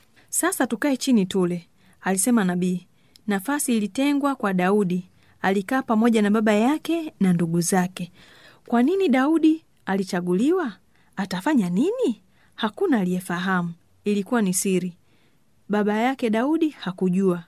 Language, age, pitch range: Swahili, 30-49, 185-260 Hz